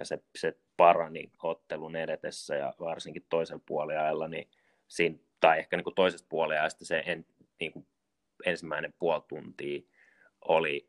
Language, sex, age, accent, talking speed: Finnish, male, 20-39, native, 145 wpm